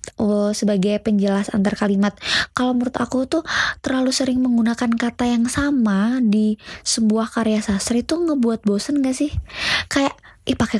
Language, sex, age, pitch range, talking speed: Indonesian, female, 20-39, 205-260 Hz, 150 wpm